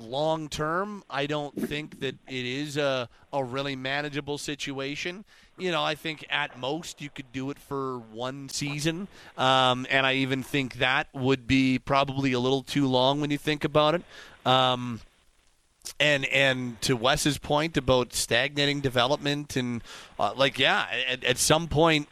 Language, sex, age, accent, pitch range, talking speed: English, male, 30-49, American, 130-155 Hz, 165 wpm